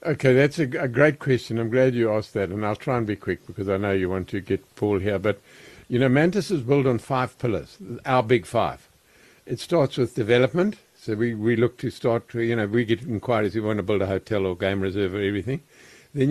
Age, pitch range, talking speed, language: 60-79, 110-135 Hz, 245 wpm, English